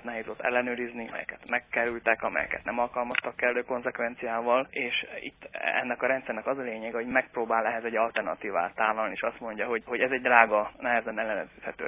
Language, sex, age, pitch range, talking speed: Hungarian, male, 20-39, 115-130 Hz, 170 wpm